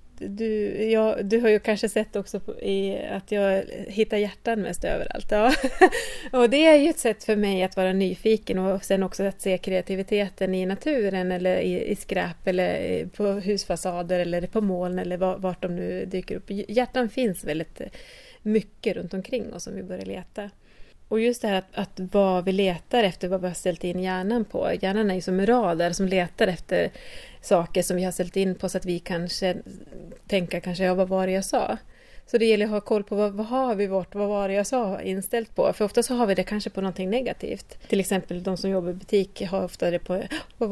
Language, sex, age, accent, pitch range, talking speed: Swedish, female, 30-49, native, 185-220 Hz, 210 wpm